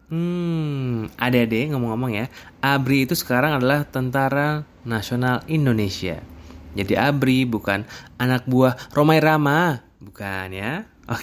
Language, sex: Indonesian, male